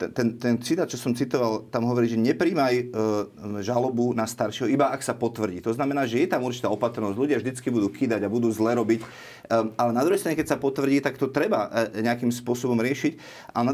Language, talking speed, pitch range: Slovak, 210 wpm, 115-140 Hz